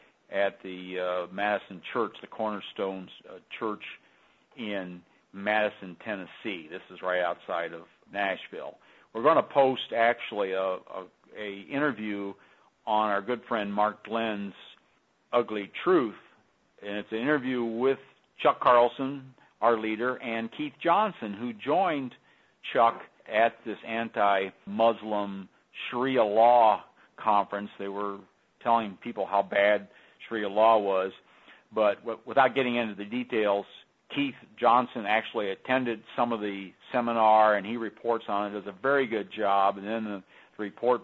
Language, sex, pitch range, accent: English, male, 100-115 Hz, American